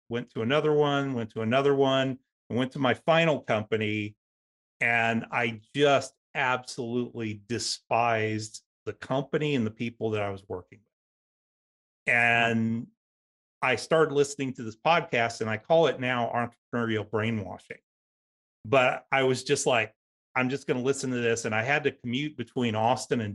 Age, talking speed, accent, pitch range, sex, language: 30-49, 160 wpm, American, 110-140 Hz, male, English